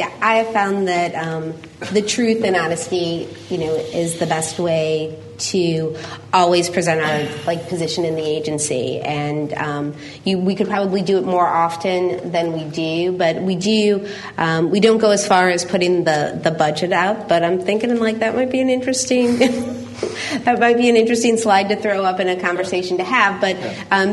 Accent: American